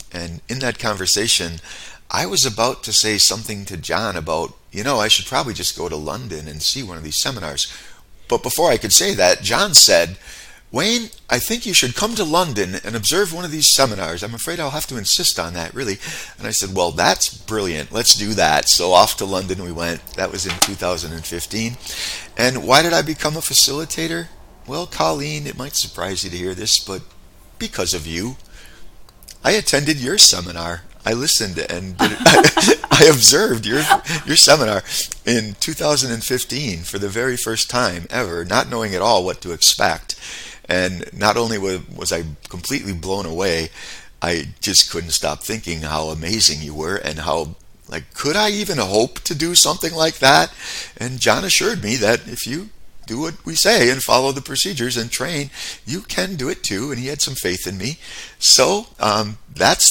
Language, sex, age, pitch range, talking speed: English, male, 40-59, 85-130 Hz, 190 wpm